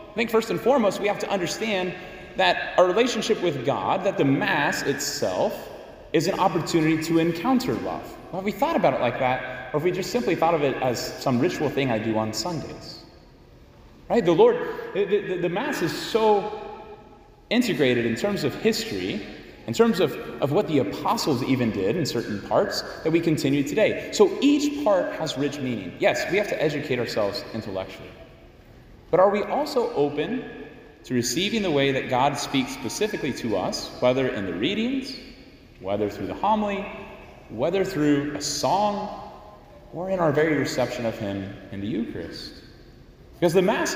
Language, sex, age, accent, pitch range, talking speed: English, male, 30-49, American, 130-210 Hz, 180 wpm